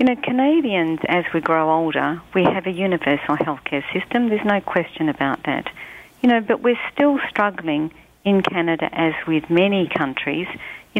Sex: female